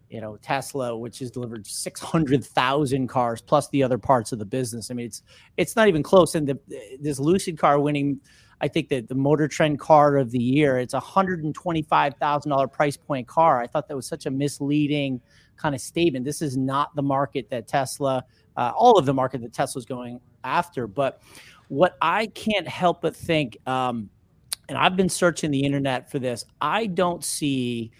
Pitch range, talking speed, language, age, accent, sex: 130-150 Hz, 190 wpm, English, 30-49, American, male